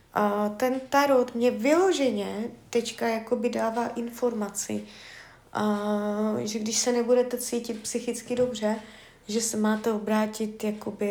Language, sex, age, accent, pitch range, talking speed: Czech, female, 20-39, native, 210-245 Hz, 110 wpm